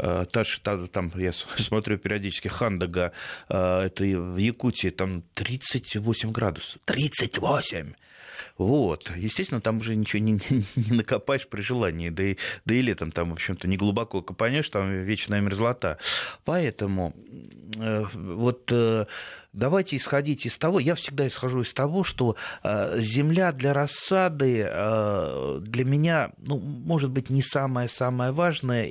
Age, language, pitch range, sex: 30-49, Russian, 105-140 Hz, male